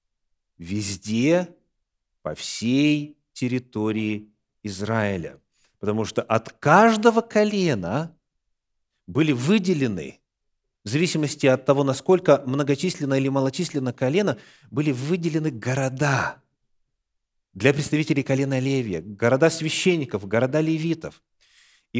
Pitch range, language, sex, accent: 120-175 Hz, Russian, male, native